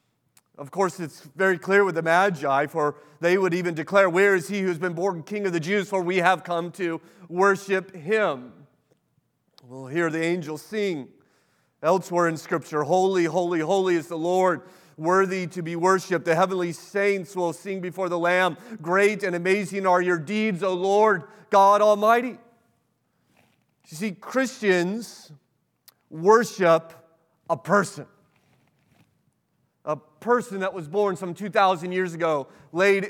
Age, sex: 30-49, male